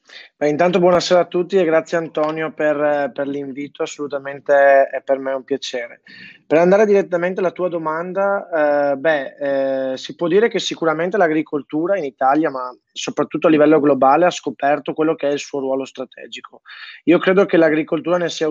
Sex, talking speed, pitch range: male, 175 wpm, 140-170 Hz